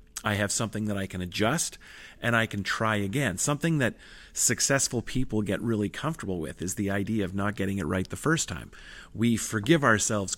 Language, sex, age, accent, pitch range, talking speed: English, male, 40-59, American, 100-130 Hz, 195 wpm